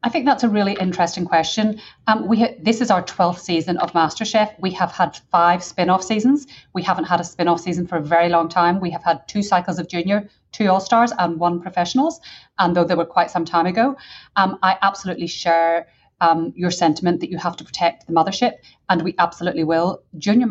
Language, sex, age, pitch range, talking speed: English, female, 30-49, 165-185 Hz, 215 wpm